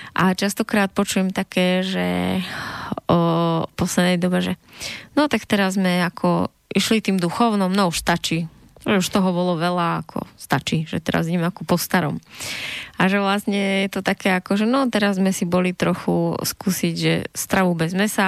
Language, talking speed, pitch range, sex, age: Slovak, 165 wpm, 180-205 Hz, female, 20-39